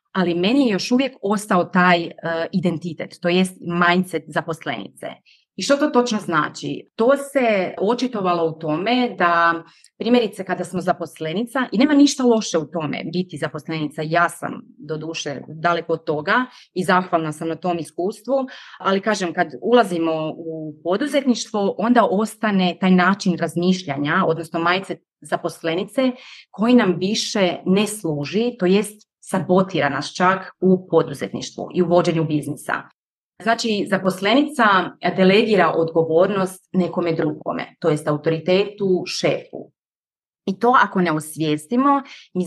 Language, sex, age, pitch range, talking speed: Croatian, female, 30-49, 165-220 Hz, 135 wpm